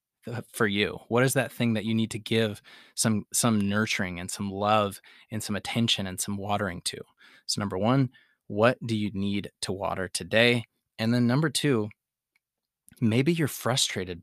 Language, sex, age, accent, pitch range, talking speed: English, male, 20-39, American, 100-115 Hz, 175 wpm